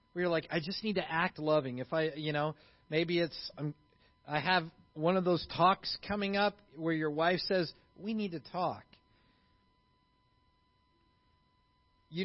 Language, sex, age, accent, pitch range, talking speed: English, male, 40-59, American, 150-225 Hz, 150 wpm